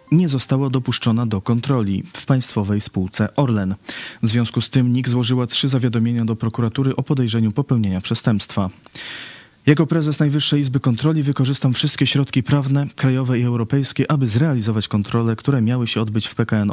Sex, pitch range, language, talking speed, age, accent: male, 110-130 Hz, Polish, 160 wpm, 20-39, native